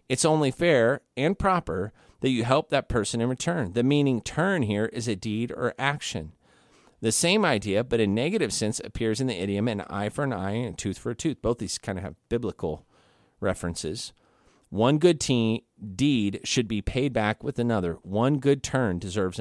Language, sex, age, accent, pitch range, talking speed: English, male, 40-59, American, 105-140 Hz, 195 wpm